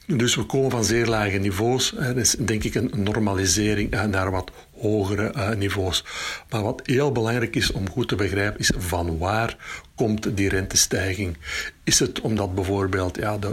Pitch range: 95-115 Hz